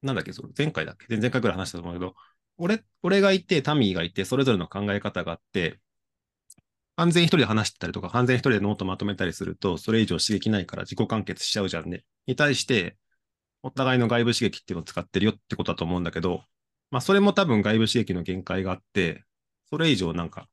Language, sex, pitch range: Japanese, male, 95-135 Hz